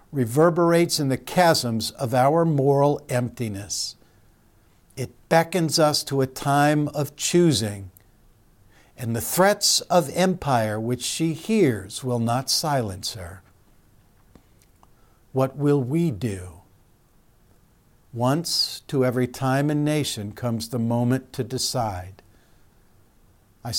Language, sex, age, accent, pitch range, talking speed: English, male, 60-79, American, 110-145 Hz, 110 wpm